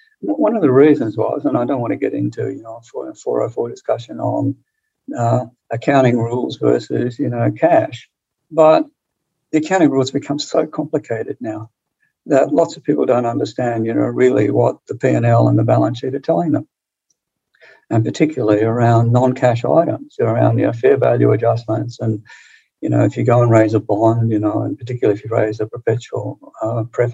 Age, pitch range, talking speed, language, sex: 60-79, 115-145 Hz, 190 wpm, English, male